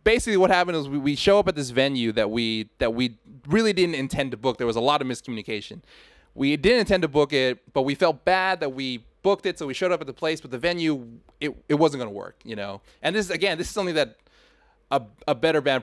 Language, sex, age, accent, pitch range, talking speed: English, male, 20-39, American, 125-185 Hz, 260 wpm